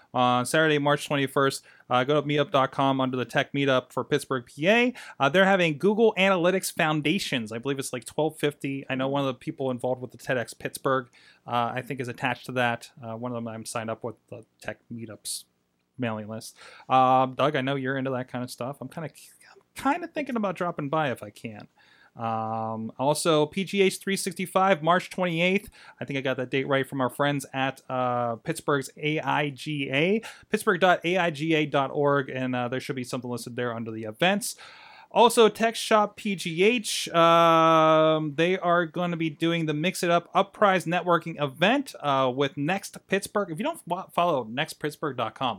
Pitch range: 125-170 Hz